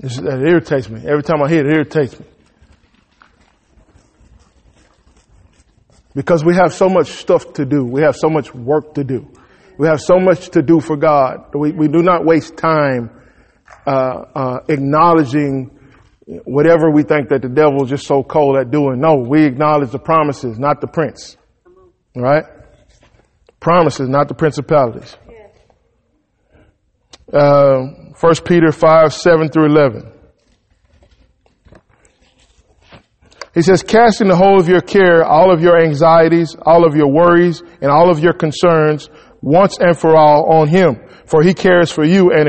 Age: 20-39